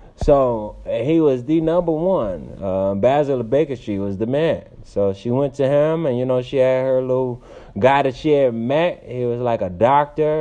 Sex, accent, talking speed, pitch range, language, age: male, American, 210 wpm, 115-170 Hz, English, 30-49